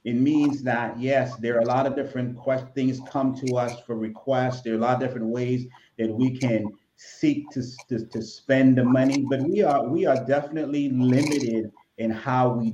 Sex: male